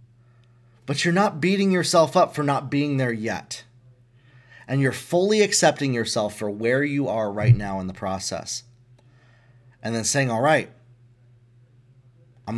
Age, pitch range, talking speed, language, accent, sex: 30-49, 120-165 Hz, 150 wpm, English, American, male